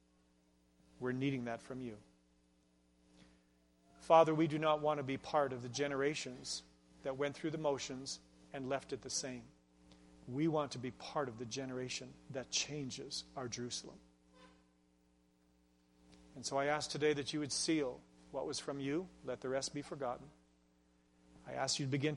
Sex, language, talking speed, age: male, English, 165 wpm, 40-59